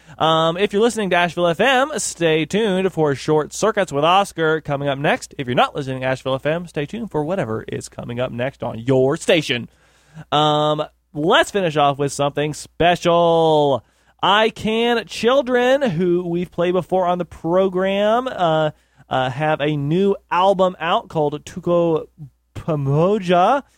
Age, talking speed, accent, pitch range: 20-39, 155 wpm, American, 135-185 Hz